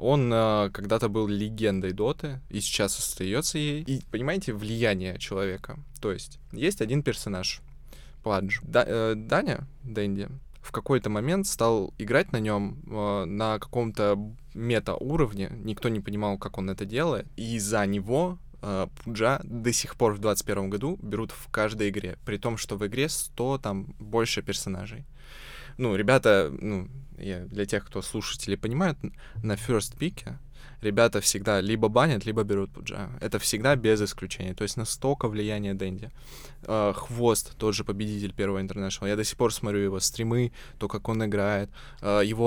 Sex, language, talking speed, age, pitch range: male, Russian, 155 wpm, 20-39, 100-125 Hz